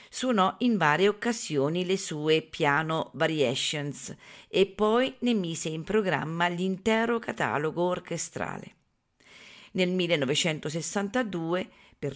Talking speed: 100 wpm